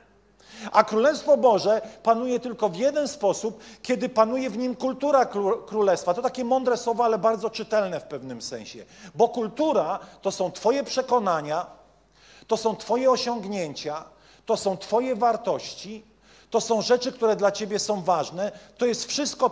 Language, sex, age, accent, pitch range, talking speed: Polish, male, 40-59, native, 195-235 Hz, 155 wpm